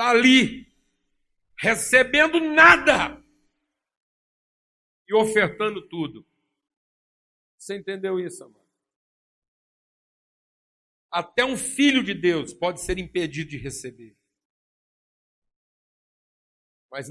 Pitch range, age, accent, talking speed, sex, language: 140-210 Hz, 60-79, Brazilian, 75 wpm, male, Portuguese